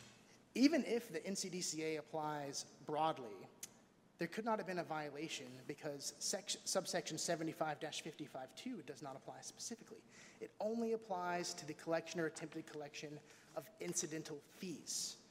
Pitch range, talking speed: 155-205 Hz, 130 wpm